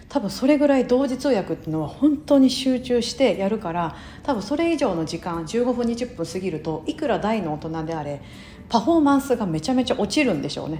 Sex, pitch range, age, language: female, 170-260 Hz, 40-59, Japanese